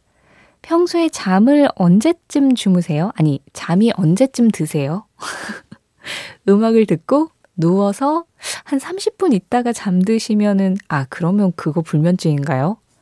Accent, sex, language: native, female, Korean